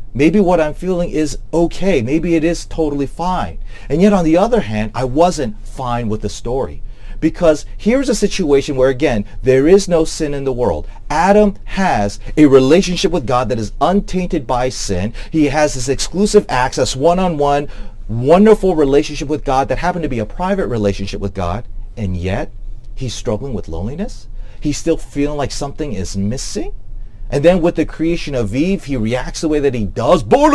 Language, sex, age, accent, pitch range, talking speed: English, male, 40-59, American, 105-160 Hz, 185 wpm